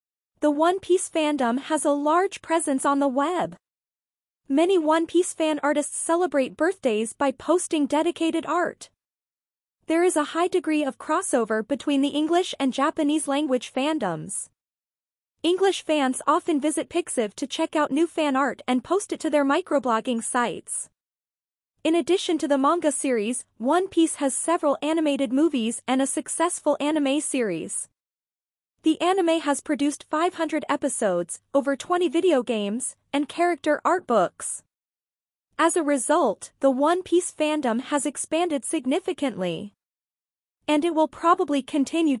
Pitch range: 275-330 Hz